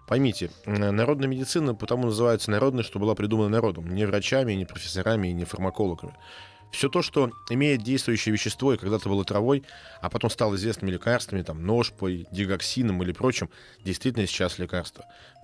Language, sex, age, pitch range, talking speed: Russian, male, 20-39, 95-115 Hz, 155 wpm